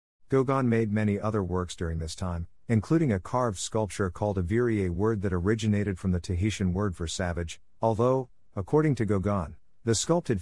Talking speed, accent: 175 wpm, American